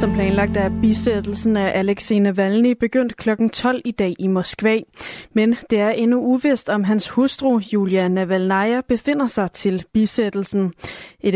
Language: Danish